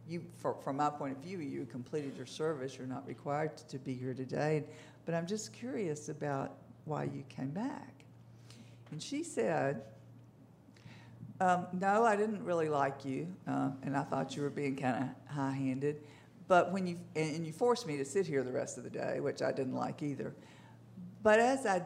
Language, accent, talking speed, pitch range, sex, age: English, American, 200 wpm, 140-180 Hz, female, 50-69